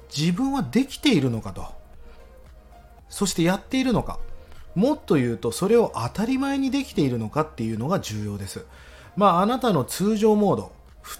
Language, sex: Japanese, male